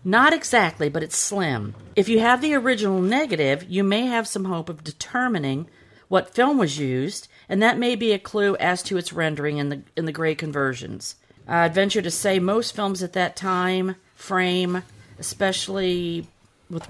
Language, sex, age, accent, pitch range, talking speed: English, female, 50-69, American, 155-200 Hz, 180 wpm